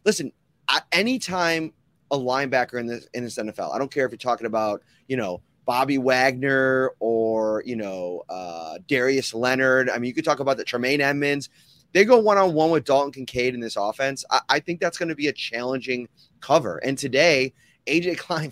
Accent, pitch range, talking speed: American, 125-155 Hz, 200 wpm